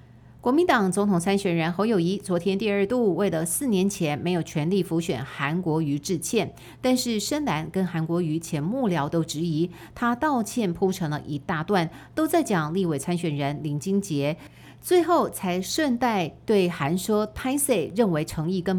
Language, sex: Chinese, female